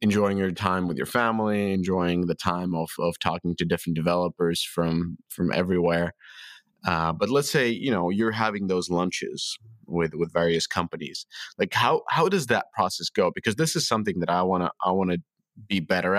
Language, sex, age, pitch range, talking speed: English, male, 20-39, 90-115 Hz, 185 wpm